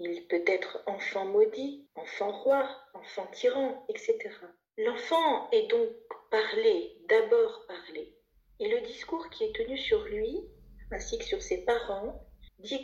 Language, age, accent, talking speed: French, 40-59, French, 140 wpm